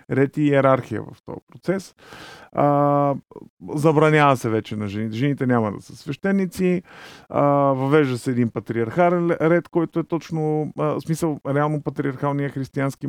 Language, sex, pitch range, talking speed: Bulgarian, male, 130-160 Hz, 140 wpm